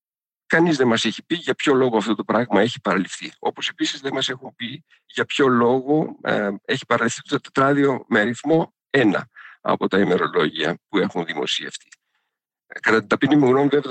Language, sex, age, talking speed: Greek, male, 50-69, 180 wpm